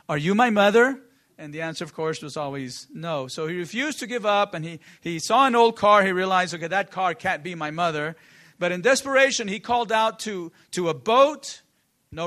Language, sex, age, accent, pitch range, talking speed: English, male, 40-59, American, 165-230 Hz, 220 wpm